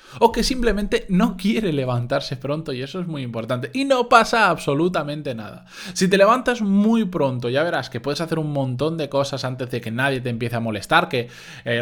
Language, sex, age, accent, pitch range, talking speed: Spanish, male, 20-39, Spanish, 125-185 Hz, 210 wpm